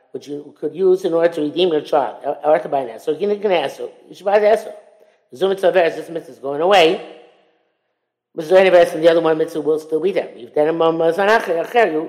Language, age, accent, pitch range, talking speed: English, 50-69, American, 150-210 Hz, 190 wpm